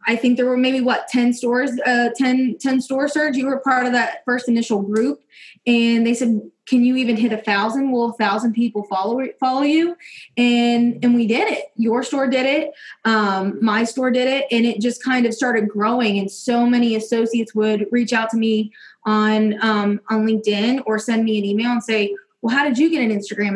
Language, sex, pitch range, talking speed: English, female, 215-245 Hz, 215 wpm